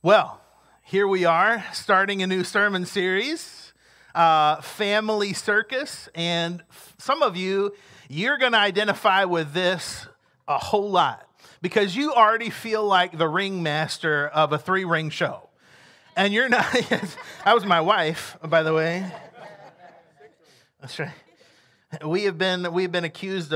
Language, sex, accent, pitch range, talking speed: English, male, American, 145-195 Hz, 140 wpm